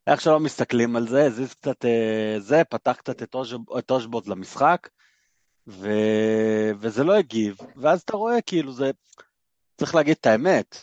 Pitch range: 115-150 Hz